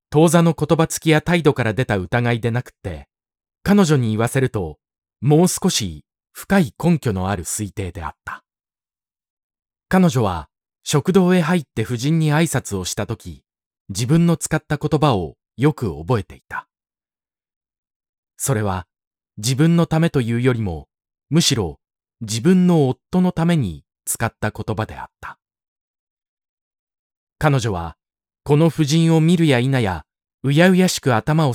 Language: Japanese